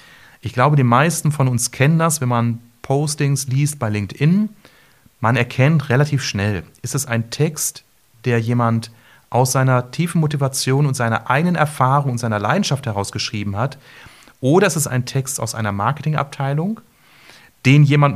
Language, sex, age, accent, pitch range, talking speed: German, male, 30-49, German, 105-135 Hz, 155 wpm